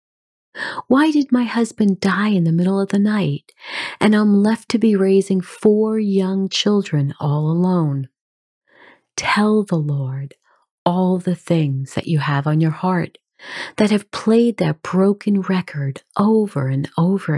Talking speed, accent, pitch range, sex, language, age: 150 wpm, American, 150-210 Hz, female, English, 40-59